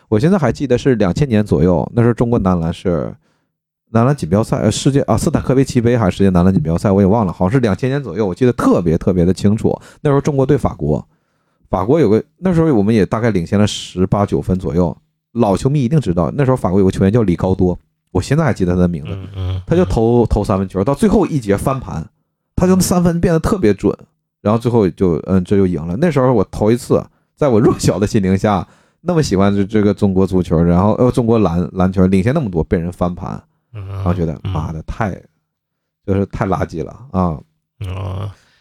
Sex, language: male, Chinese